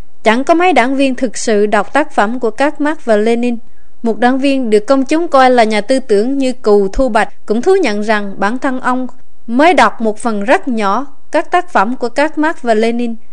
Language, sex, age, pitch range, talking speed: Vietnamese, female, 20-39, 215-275 Hz, 230 wpm